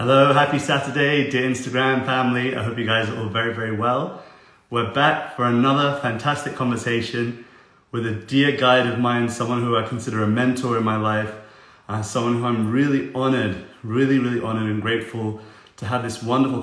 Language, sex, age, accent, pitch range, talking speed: English, male, 30-49, British, 115-130 Hz, 185 wpm